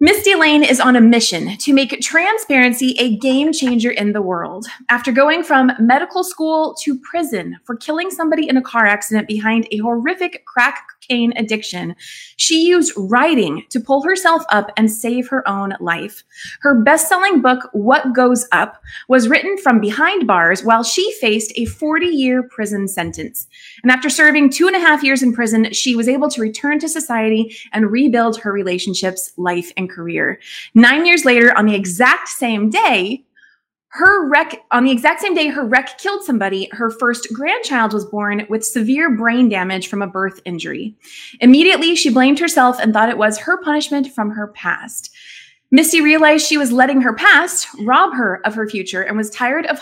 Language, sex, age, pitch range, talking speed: English, female, 30-49, 215-290 Hz, 180 wpm